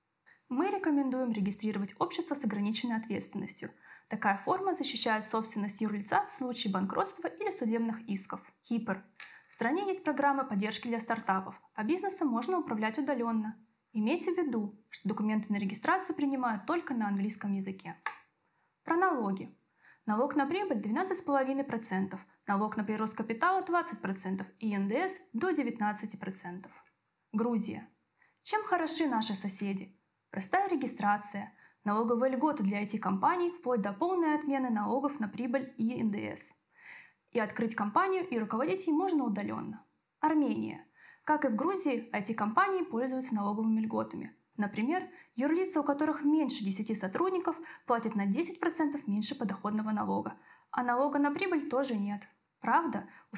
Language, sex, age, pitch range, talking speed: Russian, female, 20-39, 210-310 Hz, 135 wpm